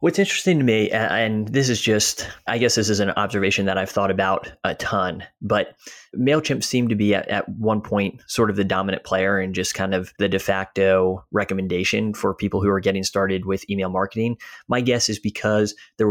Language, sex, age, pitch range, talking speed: English, male, 20-39, 95-110 Hz, 210 wpm